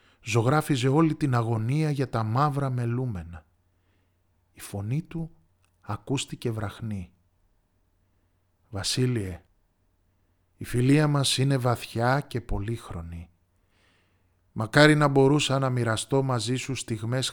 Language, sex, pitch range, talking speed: Greek, male, 95-135 Hz, 100 wpm